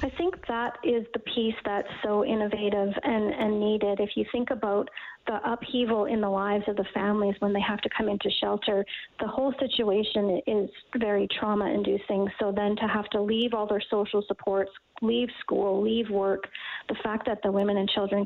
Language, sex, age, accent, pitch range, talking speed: English, female, 30-49, American, 200-230 Hz, 190 wpm